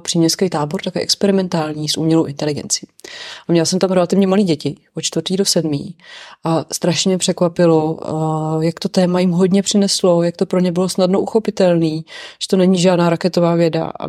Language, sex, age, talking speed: English, female, 30-49, 185 wpm